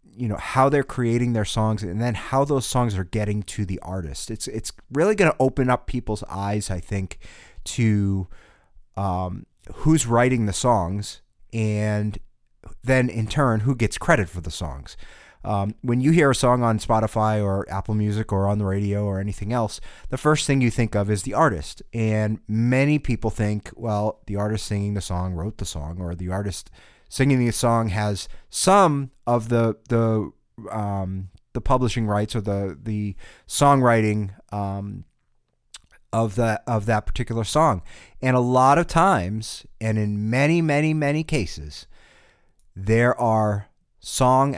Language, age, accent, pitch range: English, 30-49, American, 100-120 Hz